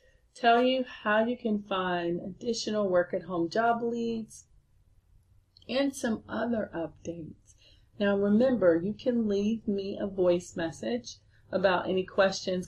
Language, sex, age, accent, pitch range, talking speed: English, female, 30-49, American, 170-215 Hz, 125 wpm